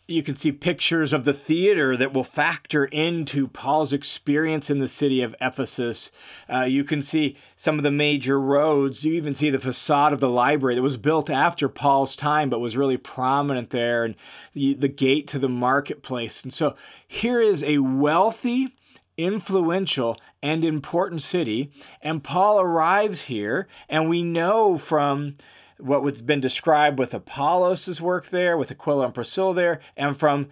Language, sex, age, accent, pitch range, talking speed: English, male, 40-59, American, 135-160 Hz, 165 wpm